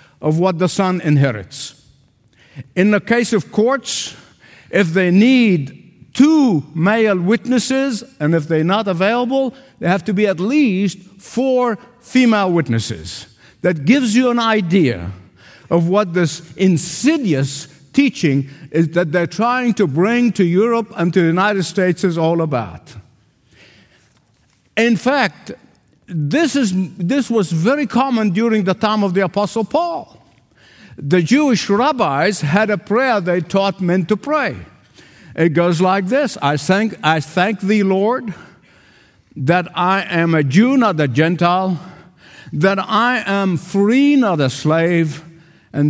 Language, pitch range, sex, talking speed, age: English, 150-220 Hz, male, 140 wpm, 50-69